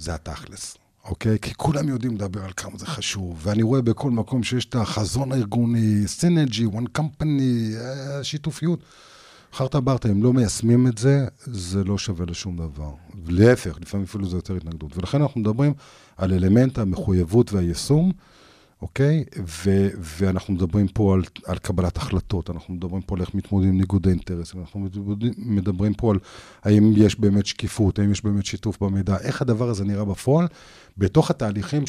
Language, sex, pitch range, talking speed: Hebrew, male, 95-130 Hz, 165 wpm